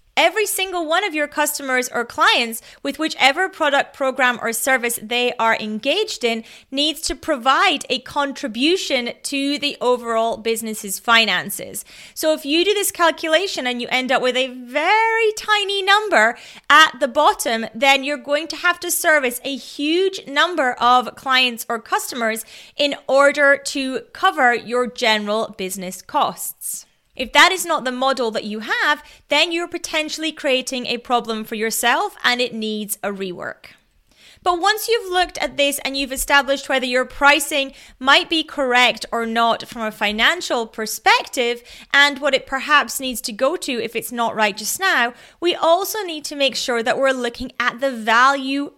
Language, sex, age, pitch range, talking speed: English, female, 30-49, 235-310 Hz, 170 wpm